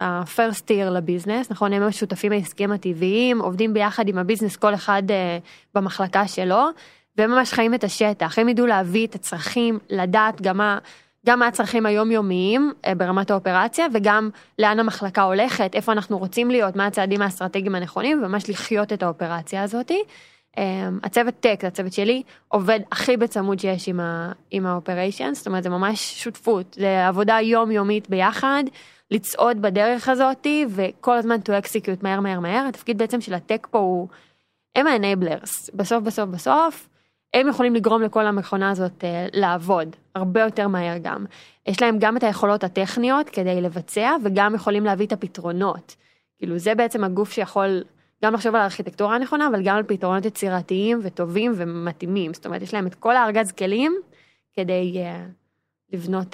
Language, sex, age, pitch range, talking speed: Hebrew, female, 20-39, 185-225 Hz, 160 wpm